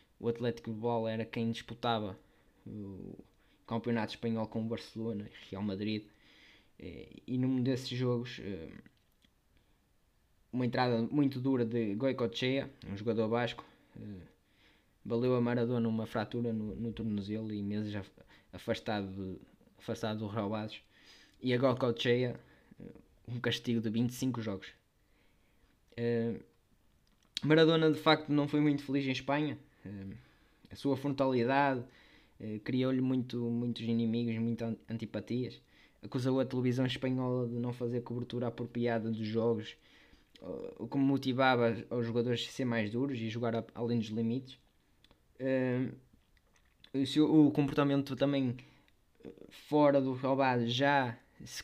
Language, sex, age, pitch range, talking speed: Portuguese, male, 20-39, 115-130 Hz, 120 wpm